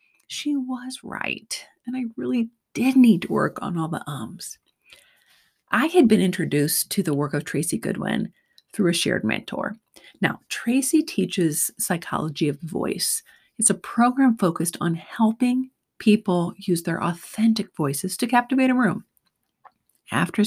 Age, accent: 30-49, American